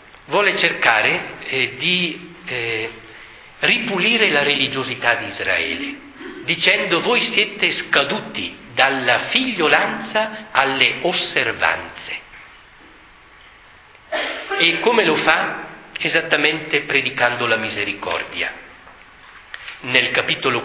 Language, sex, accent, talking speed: Italian, male, native, 80 wpm